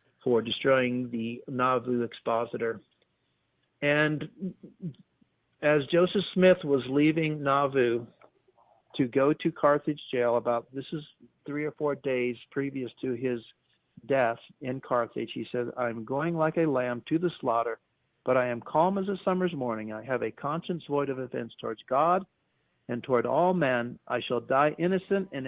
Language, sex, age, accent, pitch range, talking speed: English, male, 50-69, American, 120-145 Hz, 155 wpm